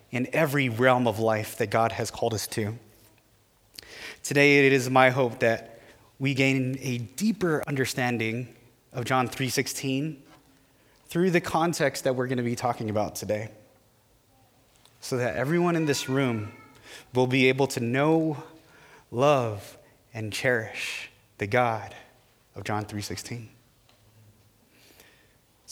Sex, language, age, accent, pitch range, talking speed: male, English, 20-39, American, 120-155 Hz, 130 wpm